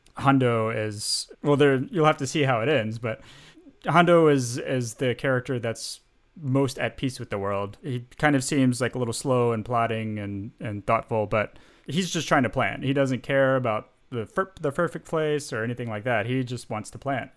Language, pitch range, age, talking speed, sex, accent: English, 110-135 Hz, 30-49, 210 wpm, male, American